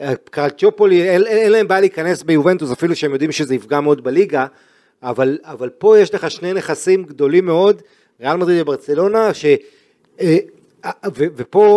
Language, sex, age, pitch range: Hebrew, male, 40-59, 140-180 Hz